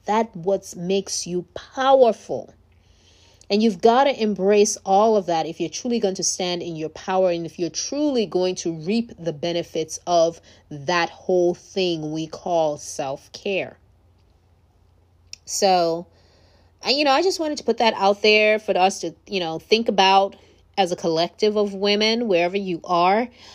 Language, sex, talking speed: English, female, 165 wpm